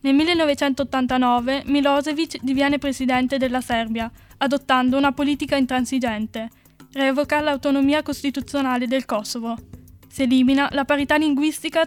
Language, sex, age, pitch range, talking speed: Italian, female, 10-29, 255-280 Hz, 105 wpm